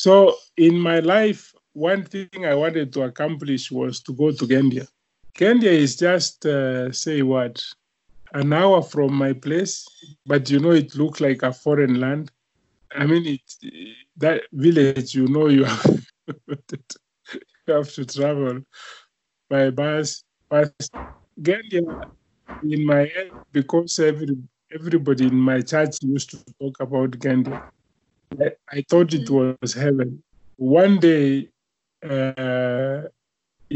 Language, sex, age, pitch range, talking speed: English, male, 30-49, 130-155 Hz, 135 wpm